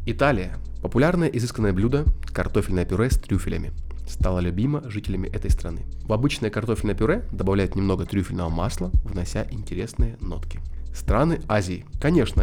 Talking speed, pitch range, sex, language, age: 130 wpm, 85-115 Hz, male, Russian, 20-39